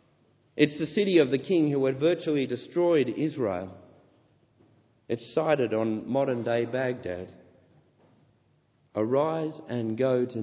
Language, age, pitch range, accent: English, 40-59, 110-140 Hz, Australian